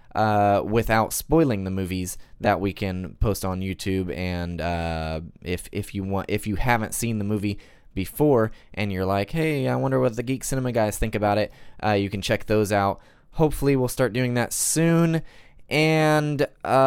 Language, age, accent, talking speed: English, 10-29, American, 180 wpm